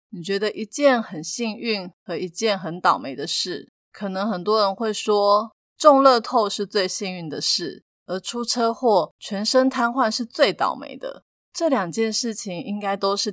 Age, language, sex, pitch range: 20-39, Chinese, female, 180-225 Hz